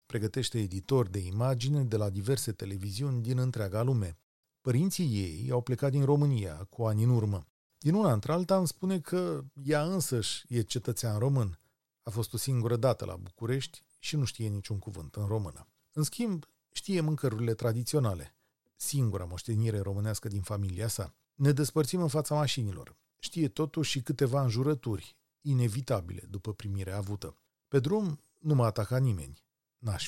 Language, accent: Romanian, native